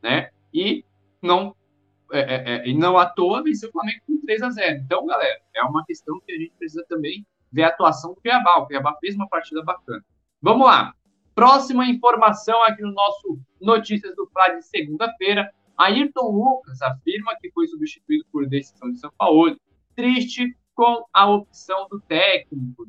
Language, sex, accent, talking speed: Portuguese, male, Brazilian, 175 wpm